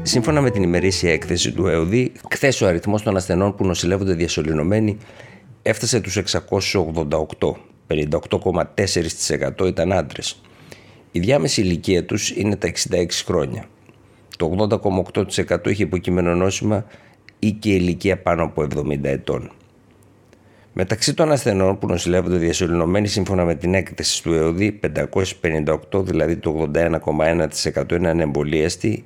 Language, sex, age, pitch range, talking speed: Greek, male, 50-69, 85-105 Hz, 120 wpm